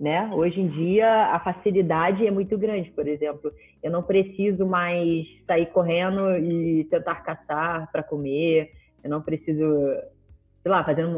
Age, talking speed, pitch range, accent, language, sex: 20-39, 150 wpm, 150-210 Hz, Brazilian, Portuguese, female